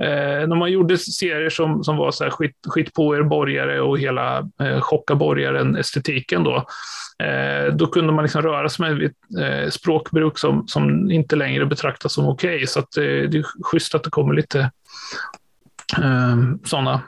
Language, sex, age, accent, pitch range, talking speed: Swedish, male, 30-49, native, 150-185 Hz, 185 wpm